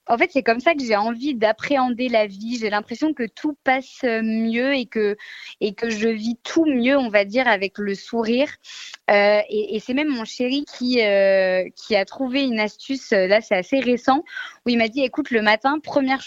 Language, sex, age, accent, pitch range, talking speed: French, female, 20-39, French, 210-275 Hz, 215 wpm